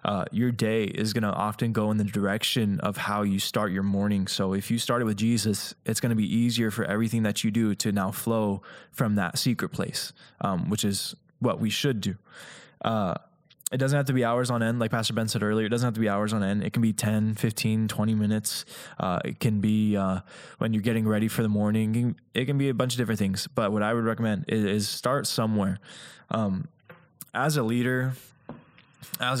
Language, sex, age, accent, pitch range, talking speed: English, male, 10-29, American, 105-120 Hz, 225 wpm